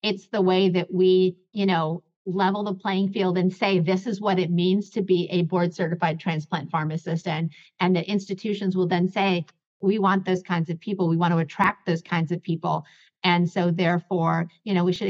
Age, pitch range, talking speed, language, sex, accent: 50-69, 180-220 Hz, 205 wpm, English, female, American